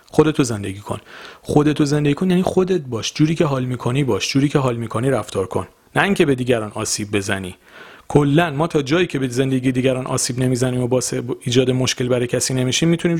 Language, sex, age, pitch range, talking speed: Persian, male, 40-59, 110-160 Hz, 200 wpm